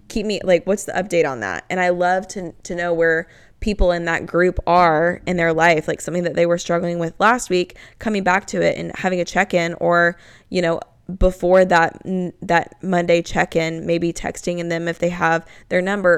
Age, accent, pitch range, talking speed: 10-29, American, 165-185 Hz, 210 wpm